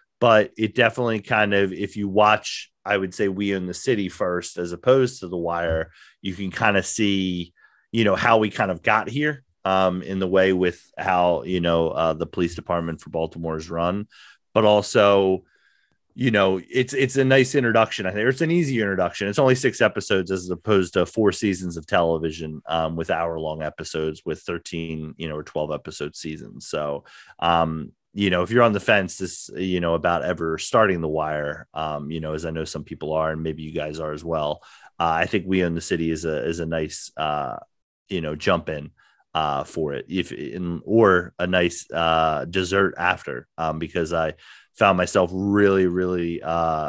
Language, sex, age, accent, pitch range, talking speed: English, male, 30-49, American, 80-100 Hz, 200 wpm